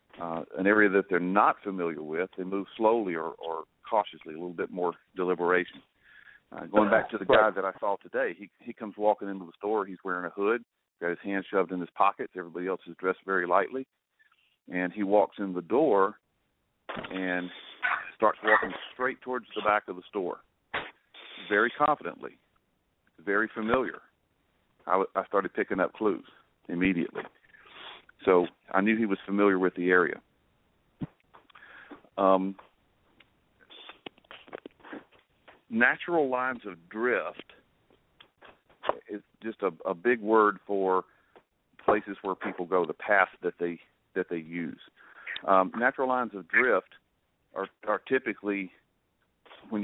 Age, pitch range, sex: 40-59, 90-110 Hz, male